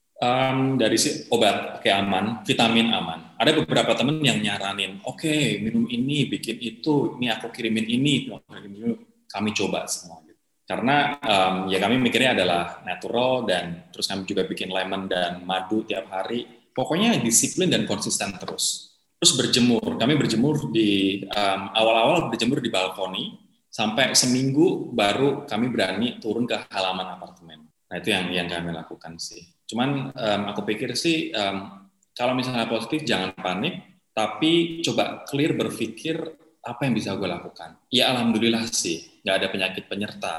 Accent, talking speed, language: native, 150 wpm, Indonesian